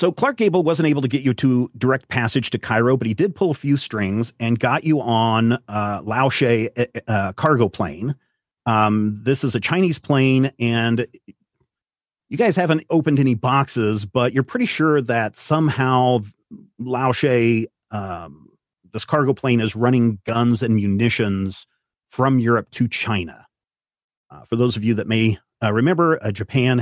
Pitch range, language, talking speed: 110-135 Hz, English, 165 wpm